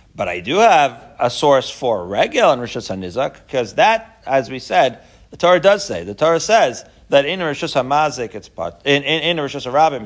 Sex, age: male, 40-59